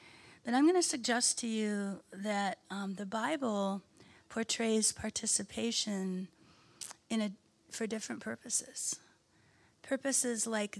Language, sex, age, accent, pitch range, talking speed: English, female, 40-59, American, 200-245 Hz, 110 wpm